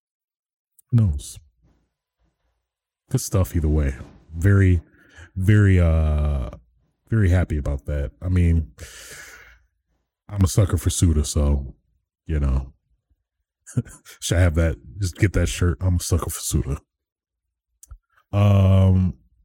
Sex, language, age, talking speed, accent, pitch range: male, English, 30-49, 110 wpm, American, 80-100 Hz